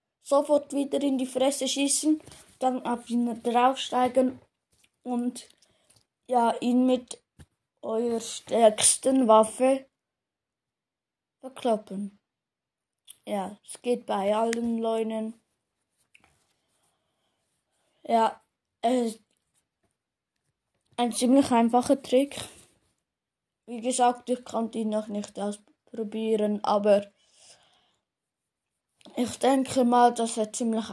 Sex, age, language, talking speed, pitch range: female, 20-39, German, 85 wpm, 220-255 Hz